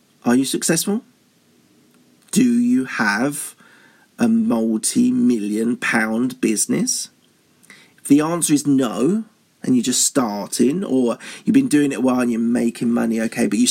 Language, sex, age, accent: English, male, 40-59, British